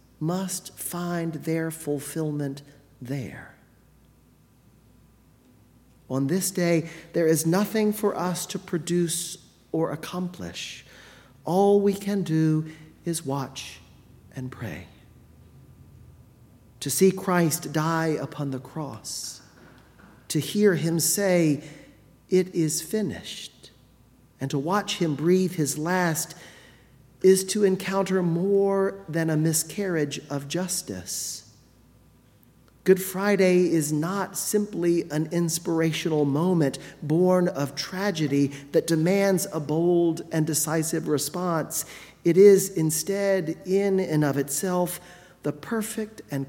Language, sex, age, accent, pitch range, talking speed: English, male, 40-59, American, 140-185 Hz, 105 wpm